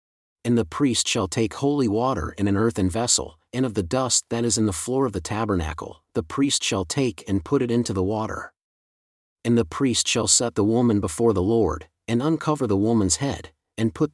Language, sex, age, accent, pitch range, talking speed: English, male, 40-59, American, 100-130 Hz, 210 wpm